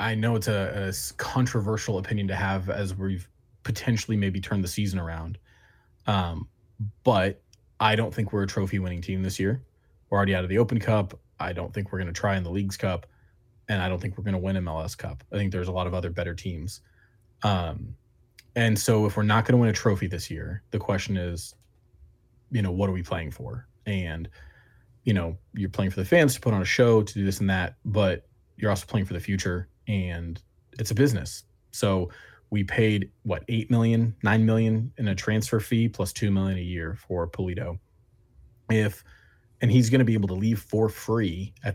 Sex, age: male, 20-39